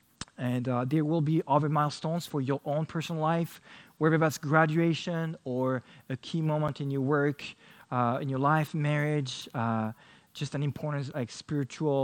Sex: male